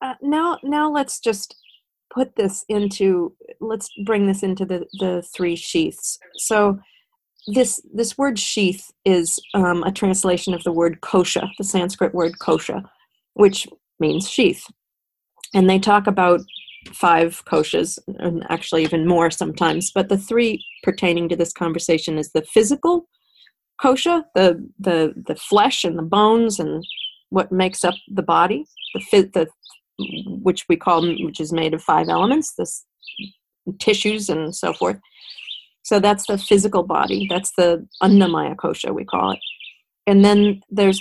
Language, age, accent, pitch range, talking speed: English, 40-59, American, 175-210 Hz, 150 wpm